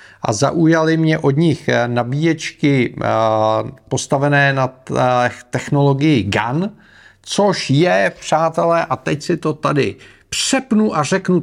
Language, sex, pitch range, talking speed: Czech, male, 110-155 Hz, 110 wpm